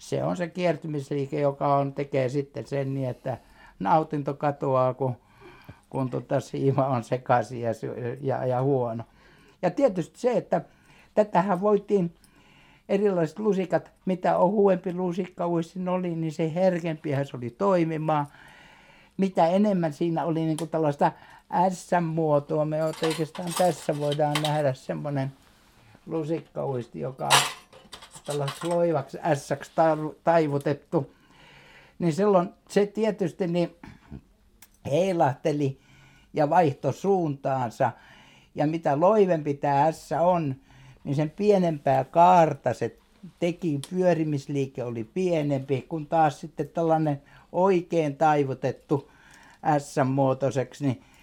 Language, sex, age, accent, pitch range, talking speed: Finnish, male, 60-79, native, 140-170 Hz, 105 wpm